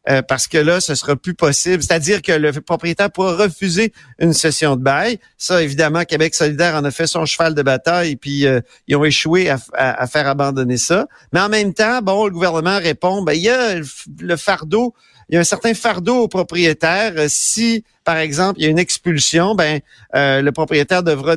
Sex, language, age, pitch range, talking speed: male, French, 50-69, 145-180 Hz, 220 wpm